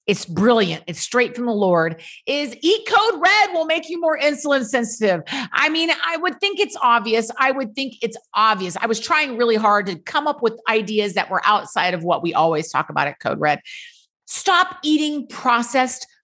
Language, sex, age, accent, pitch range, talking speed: English, female, 30-49, American, 215-285 Hz, 200 wpm